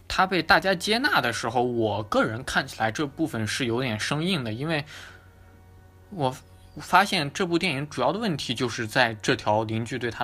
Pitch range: 110-145 Hz